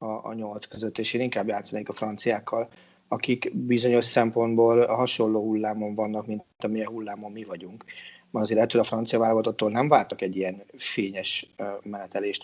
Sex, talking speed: male, 155 wpm